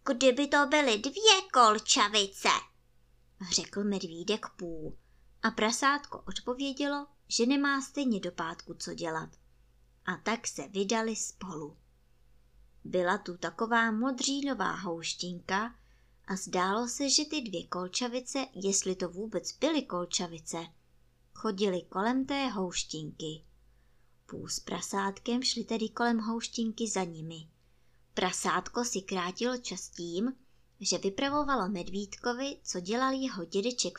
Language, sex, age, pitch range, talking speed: Czech, male, 20-39, 180-255 Hz, 115 wpm